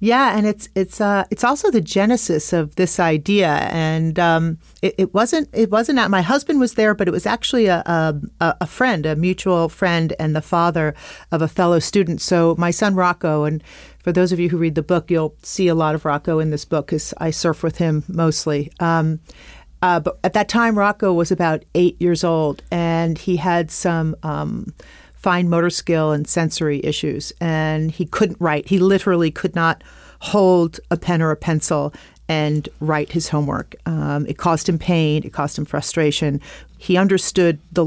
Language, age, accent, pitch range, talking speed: English, 40-59, American, 155-185 Hz, 195 wpm